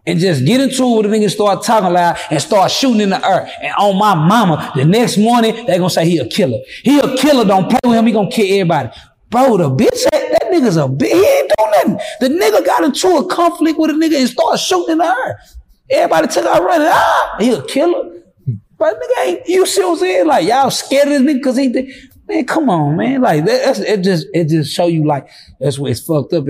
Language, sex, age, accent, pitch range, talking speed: English, male, 30-49, American, 170-265 Hz, 245 wpm